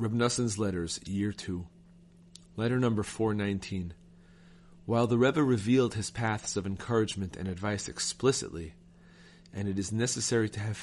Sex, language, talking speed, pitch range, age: male, English, 135 wpm, 95-120 Hz, 30-49